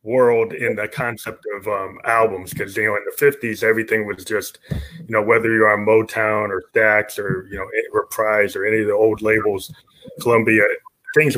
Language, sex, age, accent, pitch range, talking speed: English, male, 30-49, American, 115-170 Hz, 190 wpm